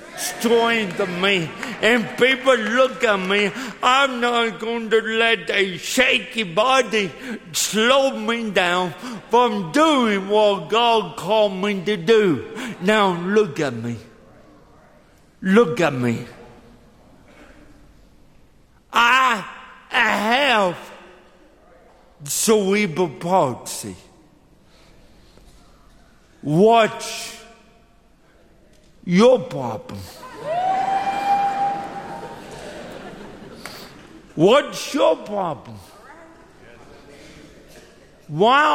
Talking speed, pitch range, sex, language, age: 70 wpm, 185-250 Hz, male, English, 60-79